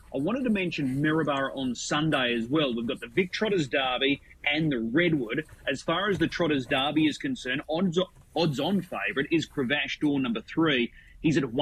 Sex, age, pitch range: male, 30-49, 140-175 Hz